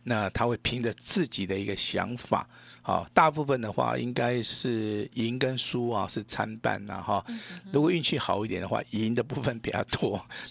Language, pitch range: Chinese, 100-130 Hz